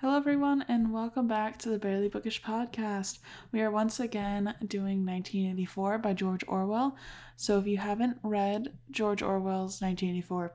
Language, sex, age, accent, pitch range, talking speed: English, female, 10-29, American, 175-205 Hz, 155 wpm